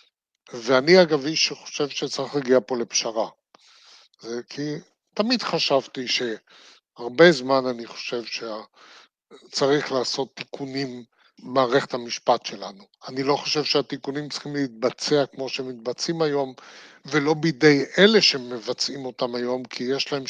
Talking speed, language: 115 wpm, Hebrew